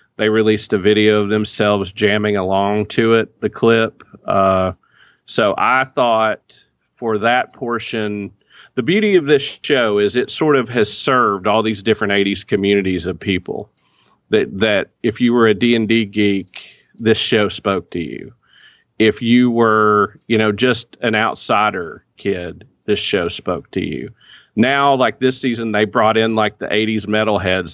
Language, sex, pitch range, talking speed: English, male, 100-115 Hz, 165 wpm